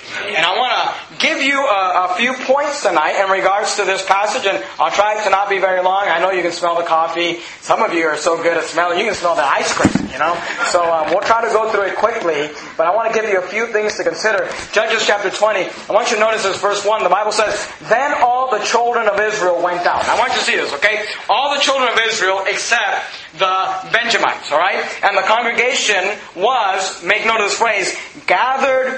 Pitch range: 190-235 Hz